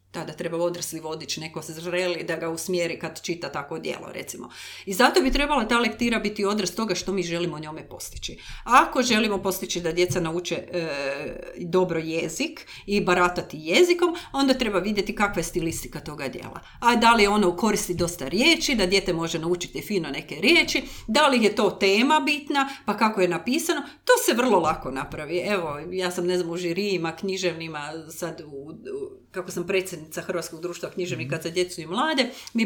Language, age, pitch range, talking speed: Croatian, 40-59, 170-250 Hz, 185 wpm